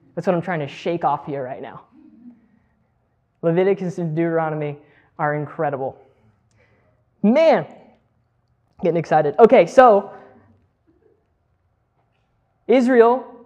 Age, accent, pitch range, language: 20-39, American, 170-215 Hz, English